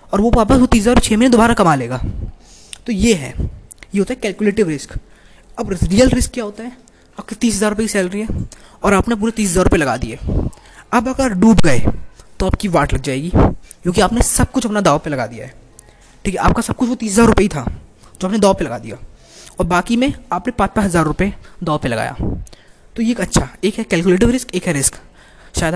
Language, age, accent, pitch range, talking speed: Hindi, 20-39, native, 165-225 Hz, 220 wpm